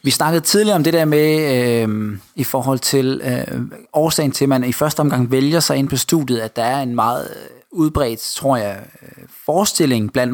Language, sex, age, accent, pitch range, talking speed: Danish, male, 20-39, native, 125-150 Hz, 195 wpm